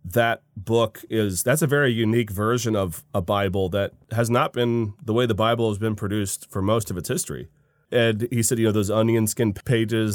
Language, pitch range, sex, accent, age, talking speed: English, 105-125 Hz, male, American, 30-49, 215 wpm